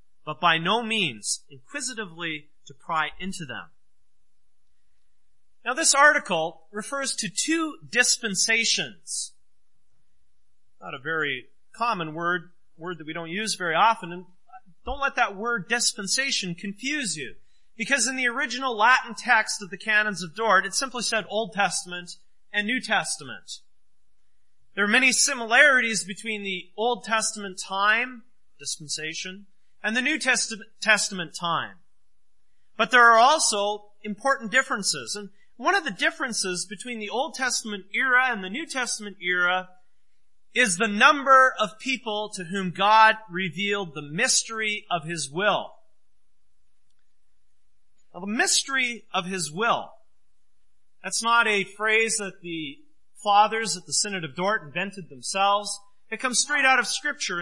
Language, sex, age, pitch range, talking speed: English, male, 30-49, 180-240 Hz, 135 wpm